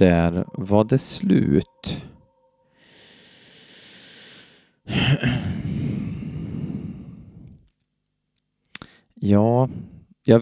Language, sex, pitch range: Swedish, male, 100-125 Hz